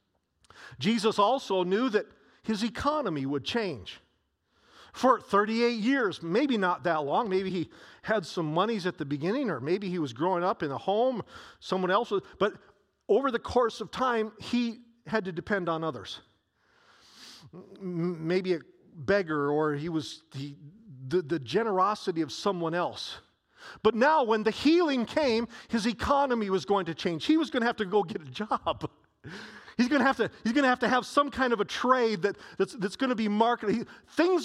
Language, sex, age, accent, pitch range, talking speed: English, male, 40-59, American, 165-240 Hz, 185 wpm